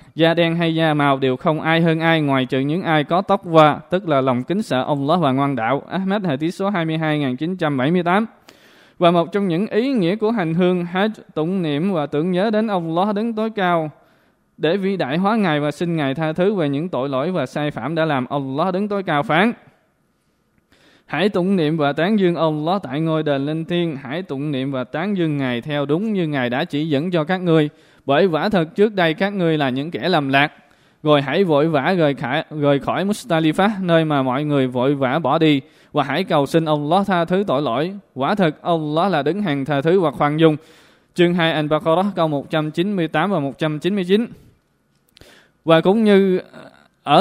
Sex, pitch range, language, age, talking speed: male, 145-180 Hz, Vietnamese, 20-39, 210 wpm